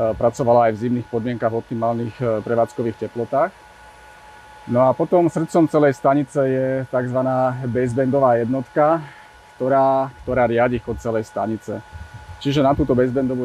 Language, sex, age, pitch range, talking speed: Slovak, male, 30-49, 115-135 Hz, 130 wpm